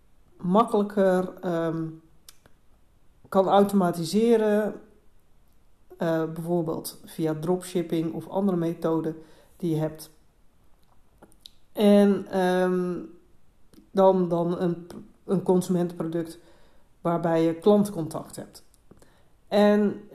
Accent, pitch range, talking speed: Dutch, 170-200 Hz, 70 wpm